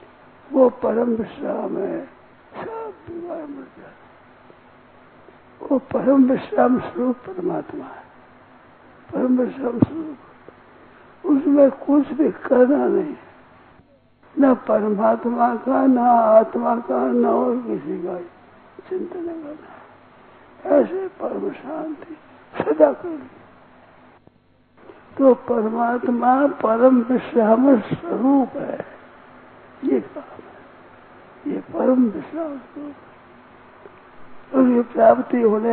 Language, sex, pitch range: Hindi, male, 235-300 Hz